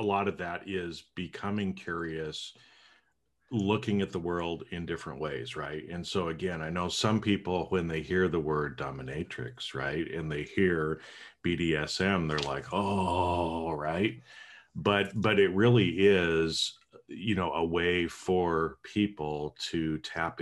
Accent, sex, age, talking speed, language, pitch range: American, male, 40-59, 145 wpm, English, 80-95 Hz